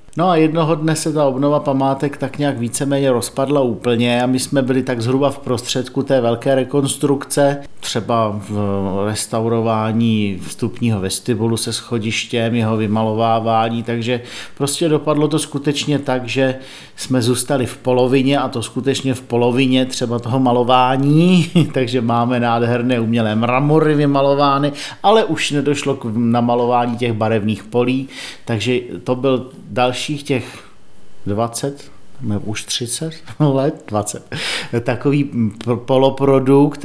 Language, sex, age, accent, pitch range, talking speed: Czech, male, 50-69, native, 115-135 Hz, 125 wpm